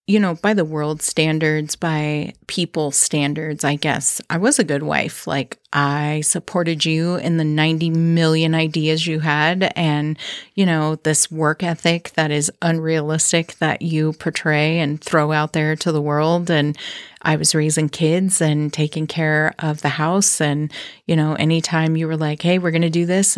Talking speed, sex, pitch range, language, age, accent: 175 wpm, female, 155-180 Hz, English, 30-49, American